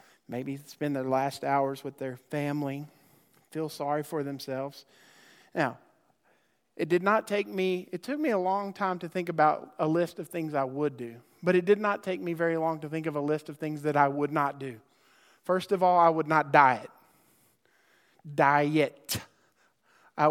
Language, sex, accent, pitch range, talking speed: English, male, American, 145-180 Hz, 185 wpm